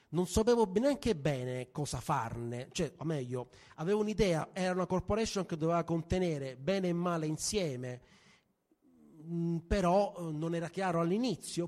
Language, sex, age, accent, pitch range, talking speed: Italian, male, 30-49, native, 145-180 Hz, 135 wpm